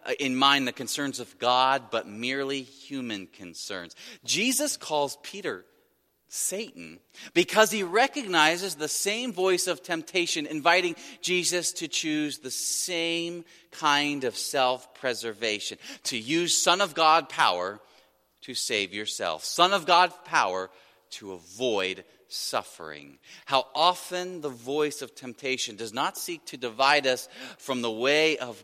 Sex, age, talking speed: male, 40-59, 130 wpm